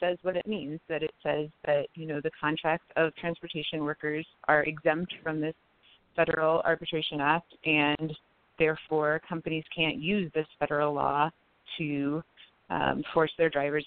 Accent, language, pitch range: American, English, 155-180 Hz